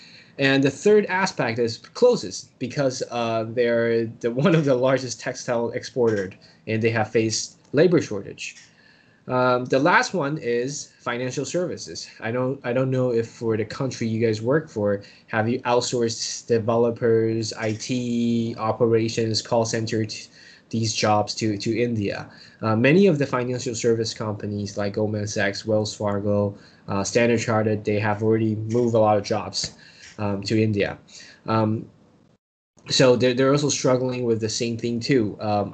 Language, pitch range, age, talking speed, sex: English, 110-130 Hz, 20-39, 160 wpm, male